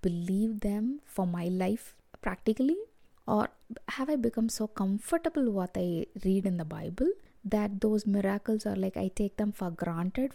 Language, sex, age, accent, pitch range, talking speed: Croatian, female, 20-39, Indian, 190-235 Hz, 160 wpm